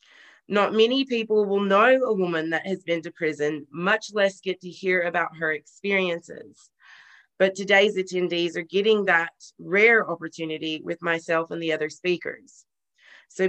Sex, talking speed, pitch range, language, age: female, 155 wpm, 170-210 Hz, English, 30-49